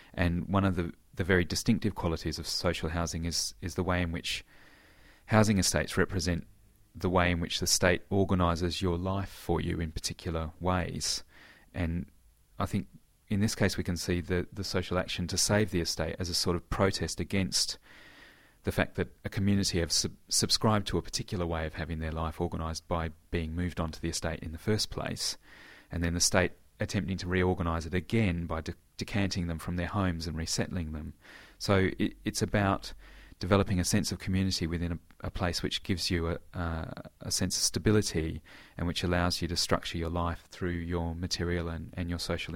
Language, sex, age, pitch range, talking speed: English, male, 30-49, 85-95 Hz, 195 wpm